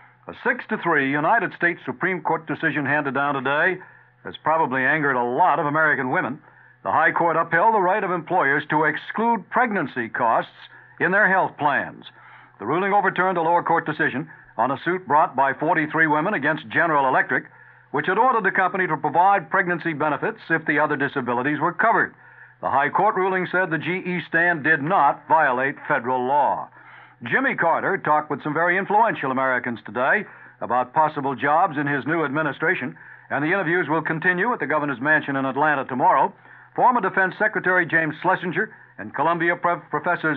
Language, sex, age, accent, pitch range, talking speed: English, male, 60-79, American, 145-180 Hz, 170 wpm